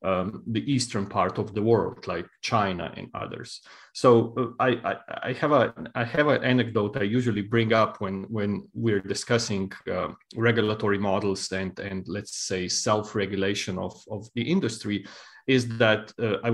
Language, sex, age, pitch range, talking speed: English, male, 30-49, 100-120 Hz, 170 wpm